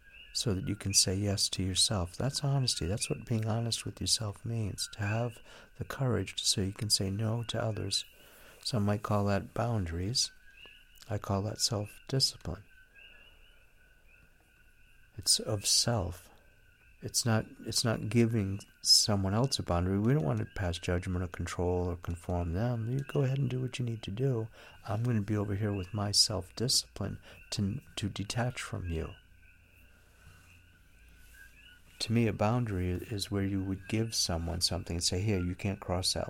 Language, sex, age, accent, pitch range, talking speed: English, male, 60-79, American, 90-115 Hz, 170 wpm